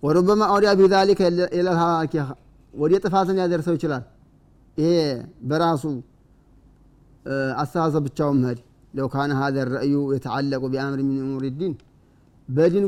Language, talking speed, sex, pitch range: Amharic, 120 wpm, male, 135-170 Hz